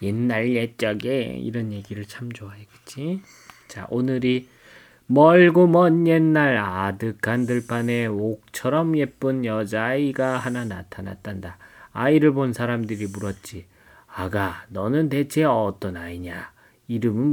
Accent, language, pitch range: native, Korean, 110-150 Hz